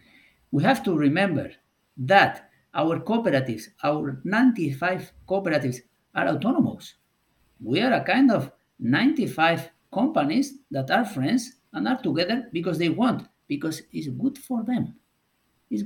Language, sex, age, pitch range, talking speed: English, male, 50-69, 150-230 Hz, 130 wpm